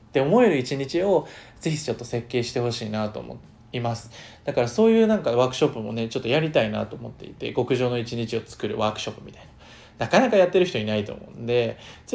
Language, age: Japanese, 20-39